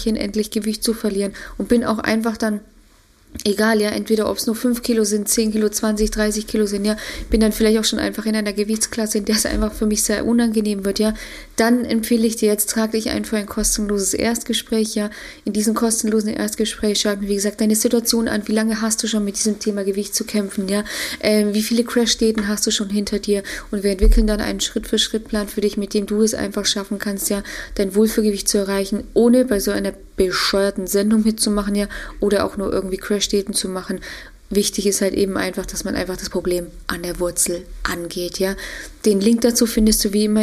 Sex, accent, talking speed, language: female, German, 215 wpm, German